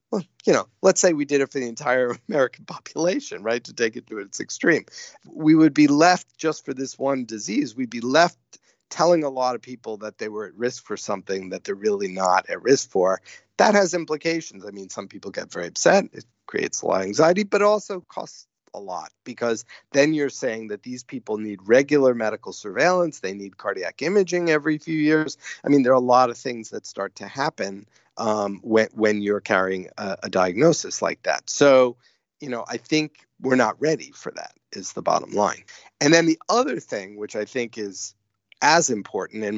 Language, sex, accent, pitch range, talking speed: English, male, American, 110-155 Hz, 210 wpm